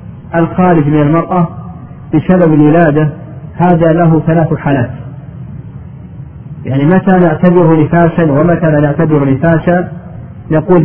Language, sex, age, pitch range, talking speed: Arabic, male, 40-59, 145-175 Hz, 95 wpm